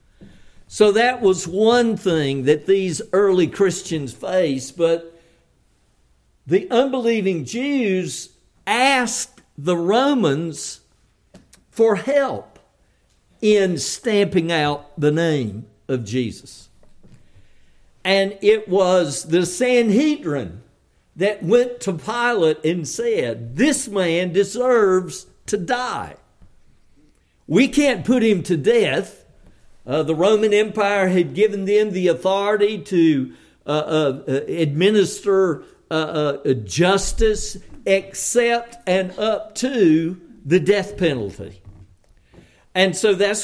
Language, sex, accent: English, male, American